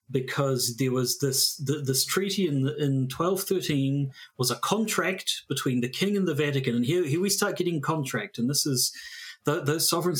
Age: 40-59